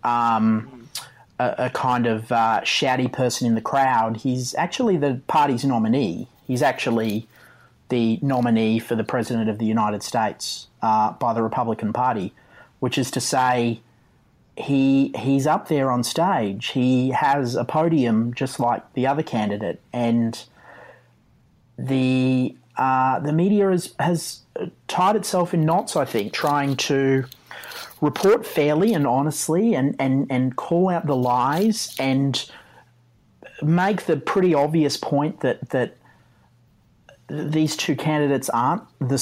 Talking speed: 140 wpm